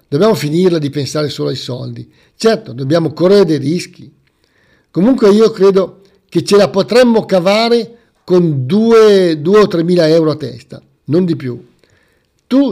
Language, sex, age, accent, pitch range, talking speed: Italian, male, 50-69, native, 145-205 Hz, 150 wpm